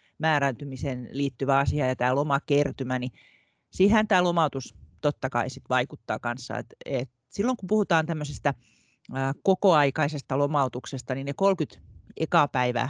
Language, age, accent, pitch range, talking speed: Finnish, 40-59, native, 130-150 Hz, 110 wpm